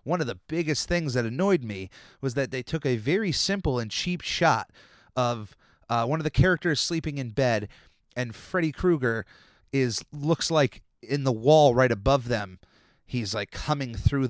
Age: 30-49